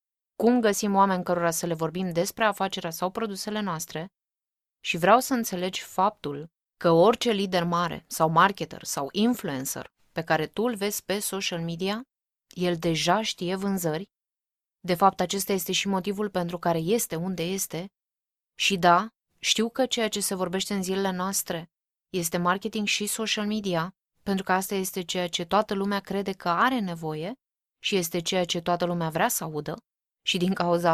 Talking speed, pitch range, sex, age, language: 170 wpm, 175-205 Hz, female, 20-39, Romanian